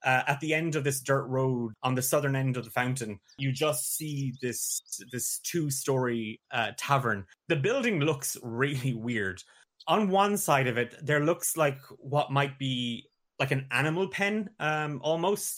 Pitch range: 115-140 Hz